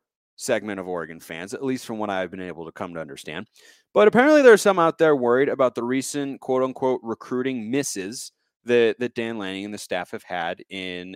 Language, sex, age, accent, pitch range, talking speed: English, male, 30-49, American, 110-145 Hz, 215 wpm